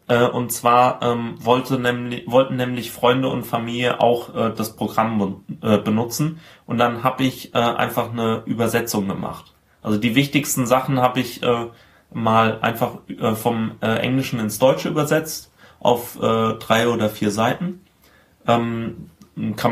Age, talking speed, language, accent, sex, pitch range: 30-49, 145 wpm, German, German, male, 105-125 Hz